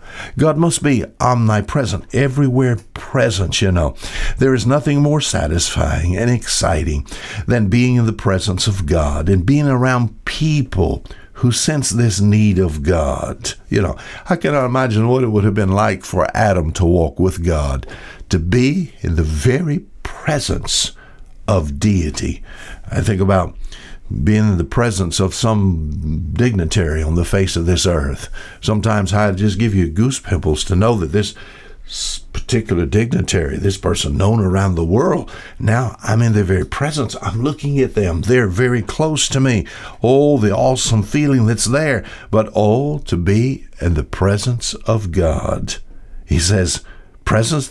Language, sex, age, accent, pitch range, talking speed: English, male, 60-79, American, 90-125 Hz, 155 wpm